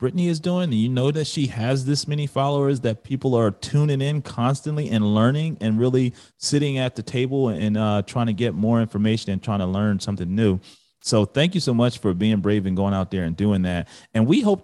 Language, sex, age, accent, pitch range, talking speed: English, male, 30-49, American, 105-135 Hz, 235 wpm